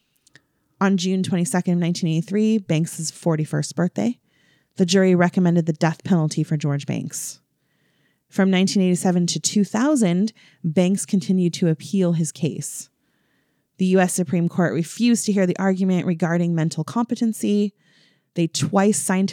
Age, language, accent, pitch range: 30-49, English, American, 160-200 Hz